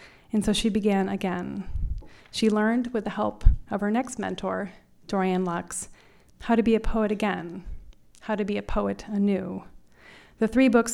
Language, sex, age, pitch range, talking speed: English, female, 30-49, 190-220 Hz, 170 wpm